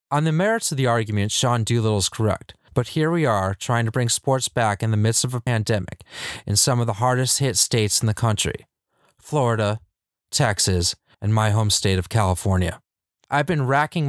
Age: 30-49